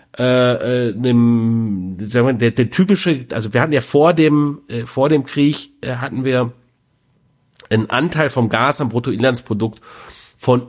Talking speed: 140 wpm